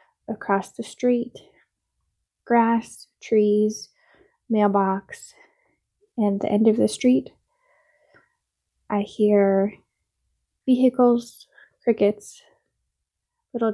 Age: 10-29